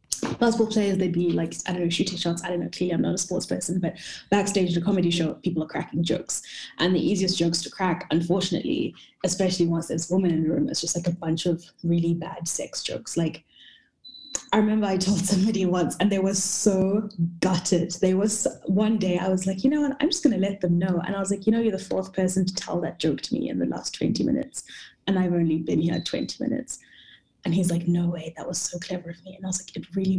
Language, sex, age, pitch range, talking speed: English, female, 20-39, 175-200 Hz, 250 wpm